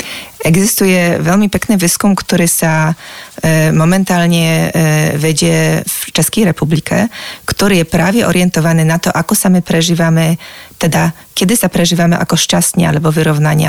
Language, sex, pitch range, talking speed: Slovak, female, 160-190 Hz, 130 wpm